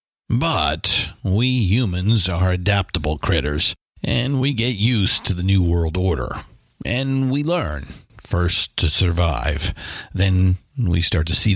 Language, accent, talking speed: English, American, 135 wpm